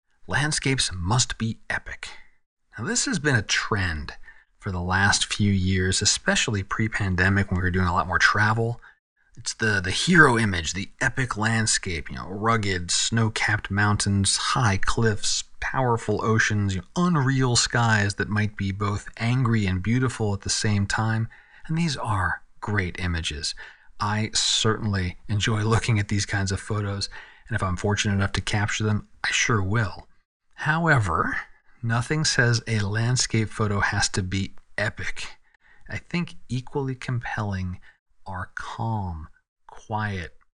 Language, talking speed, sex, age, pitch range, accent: English, 150 wpm, male, 40-59, 100-120 Hz, American